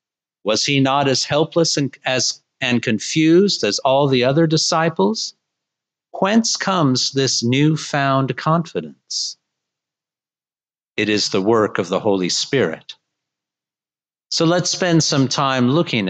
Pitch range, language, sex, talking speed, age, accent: 110-150 Hz, English, male, 125 wpm, 50-69, American